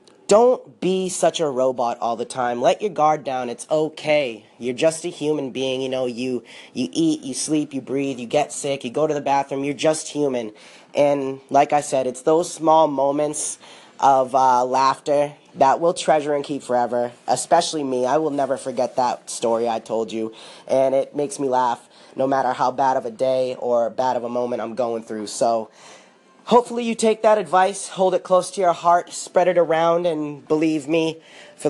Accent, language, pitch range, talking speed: American, English, 140-165 Hz, 200 wpm